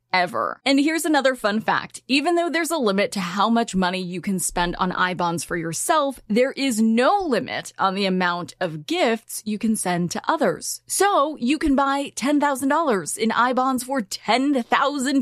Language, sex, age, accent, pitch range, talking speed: English, female, 20-39, American, 190-280 Hz, 180 wpm